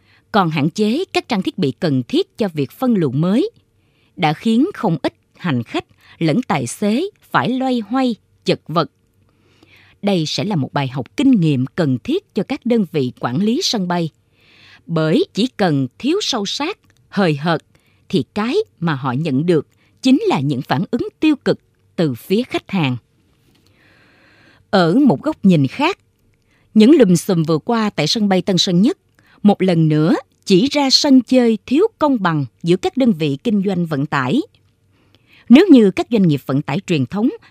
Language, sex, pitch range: Vietnamese, female, 150-250 Hz